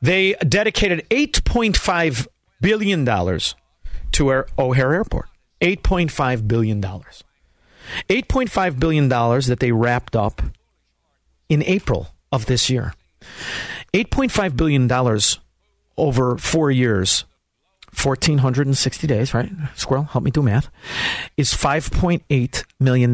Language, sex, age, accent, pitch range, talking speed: English, male, 50-69, American, 120-175 Hz, 105 wpm